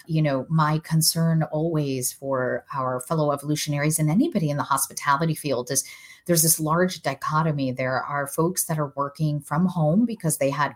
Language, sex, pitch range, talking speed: English, female, 135-160 Hz, 175 wpm